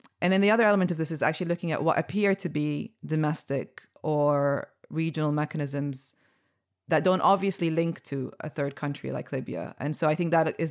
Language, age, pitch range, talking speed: English, 20-39, 140-155 Hz, 195 wpm